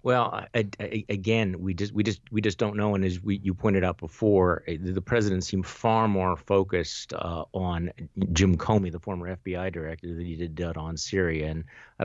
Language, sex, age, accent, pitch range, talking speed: English, male, 50-69, American, 85-105 Hz, 190 wpm